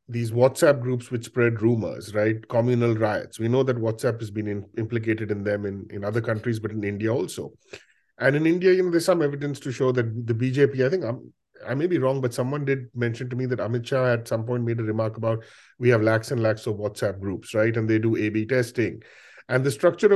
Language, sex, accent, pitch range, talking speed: English, male, Indian, 110-135 Hz, 240 wpm